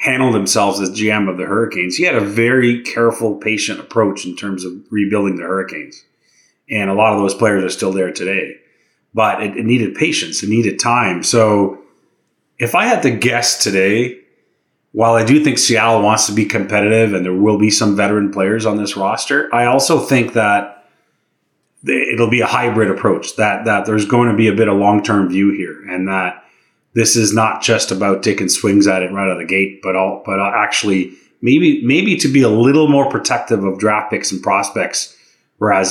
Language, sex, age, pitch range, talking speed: English, male, 30-49, 95-115 Hz, 200 wpm